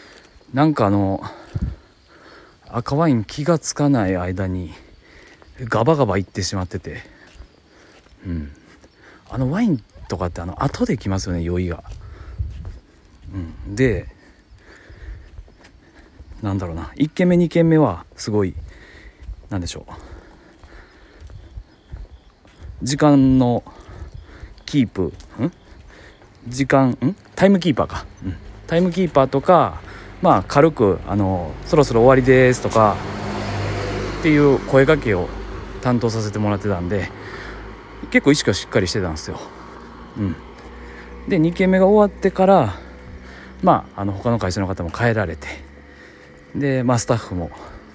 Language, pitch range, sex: Japanese, 85-130 Hz, male